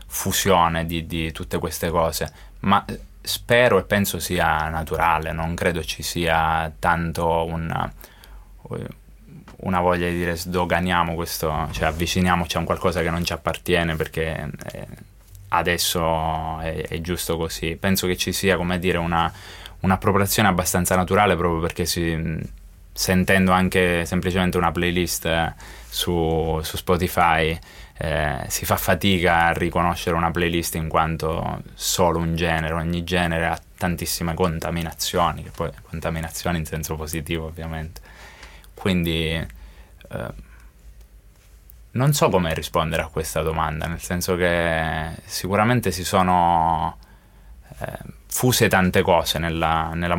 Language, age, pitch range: Italian, 20-39, 80-90 Hz